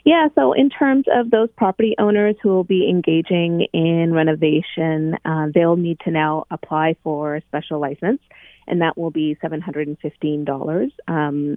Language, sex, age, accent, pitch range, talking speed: English, female, 30-49, American, 150-185 Hz, 155 wpm